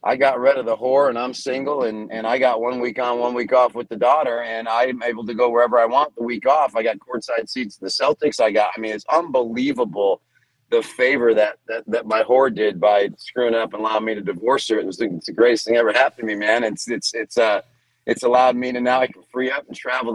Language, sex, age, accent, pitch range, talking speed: English, male, 40-59, American, 115-135 Hz, 265 wpm